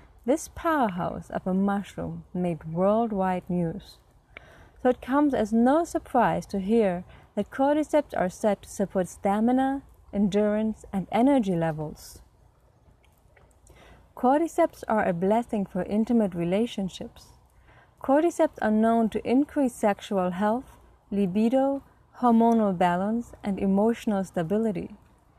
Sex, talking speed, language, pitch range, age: female, 110 wpm, English, 180-245 Hz, 30-49